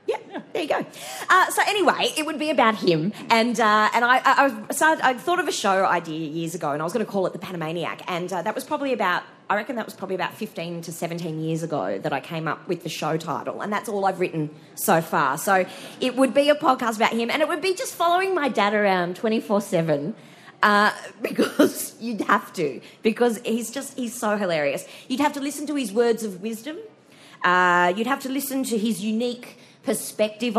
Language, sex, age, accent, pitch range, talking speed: English, female, 30-49, Australian, 175-255 Hz, 225 wpm